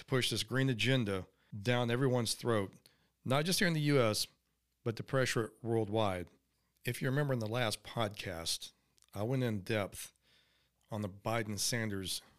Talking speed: 160 wpm